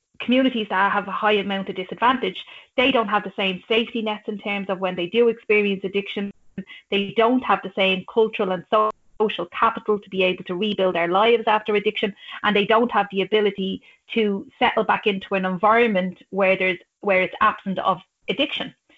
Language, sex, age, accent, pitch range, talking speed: English, female, 30-49, Irish, 190-225 Hz, 190 wpm